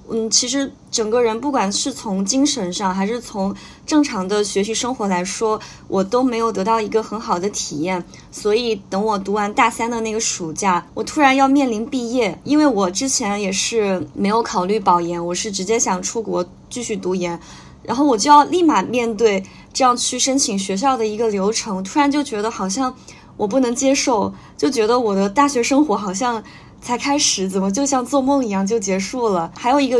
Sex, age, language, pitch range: female, 20-39, Chinese, 190-240 Hz